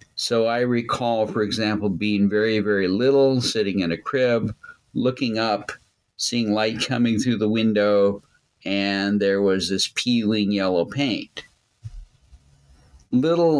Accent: American